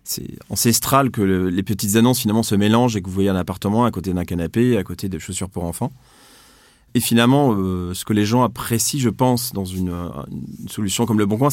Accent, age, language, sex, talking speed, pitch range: French, 30-49, French, male, 230 wpm, 100-120 Hz